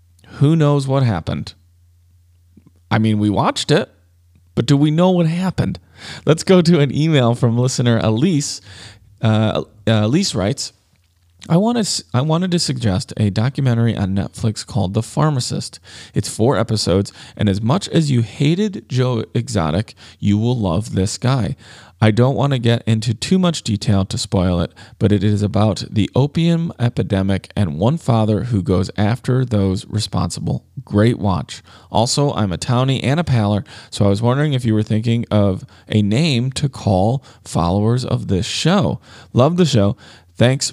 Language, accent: English, American